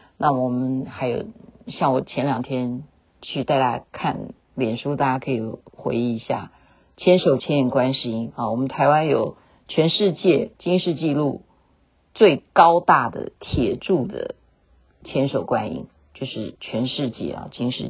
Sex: female